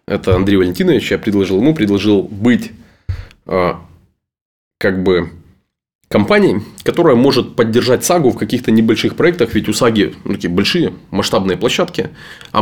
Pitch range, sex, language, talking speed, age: 105-145 Hz, male, Russian, 140 wpm, 20-39